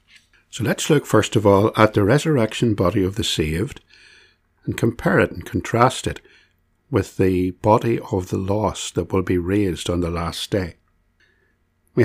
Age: 60-79